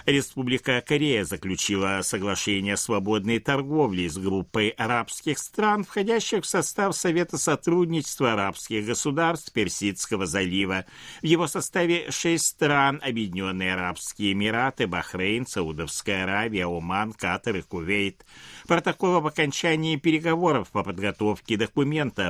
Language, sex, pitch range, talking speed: Russian, male, 100-160 Hz, 115 wpm